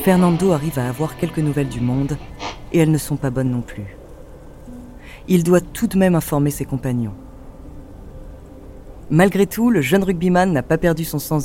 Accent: French